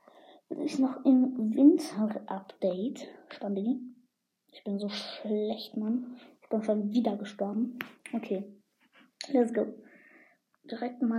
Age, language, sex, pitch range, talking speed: 20-39, German, female, 230-300 Hz, 115 wpm